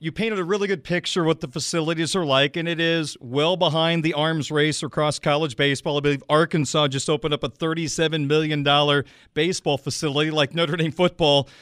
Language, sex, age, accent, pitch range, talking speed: English, male, 40-59, American, 145-175 Hz, 195 wpm